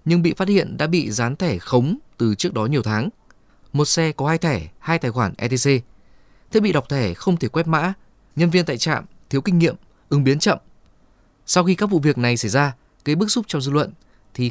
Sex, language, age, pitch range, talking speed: male, Vietnamese, 20-39, 120-165 Hz, 230 wpm